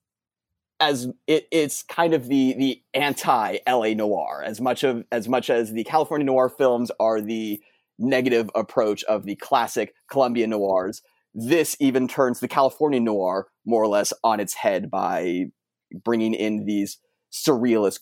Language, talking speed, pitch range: English, 155 wpm, 105-140 Hz